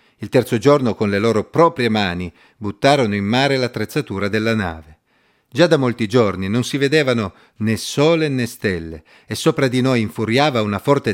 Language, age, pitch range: Italian, 40-59, 105-140 Hz